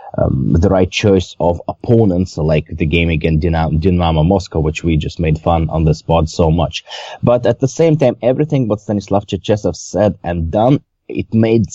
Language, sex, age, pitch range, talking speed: English, male, 30-49, 85-110 Hz, 185 wpm